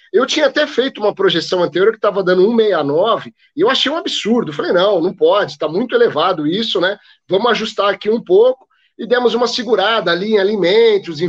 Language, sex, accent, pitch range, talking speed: Portuguese, male, Brazilian, 170-230 Hz, 200 wpm